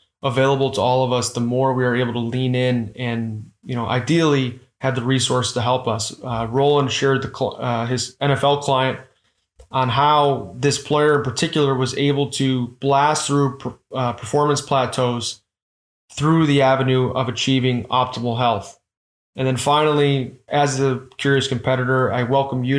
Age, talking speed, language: 20-39, 165 wpm, English